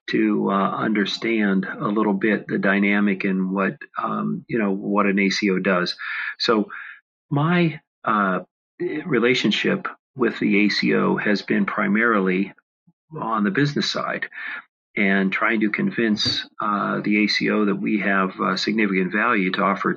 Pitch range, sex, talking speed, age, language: 95-120 Hz, male, 140 wpm, 40-59, English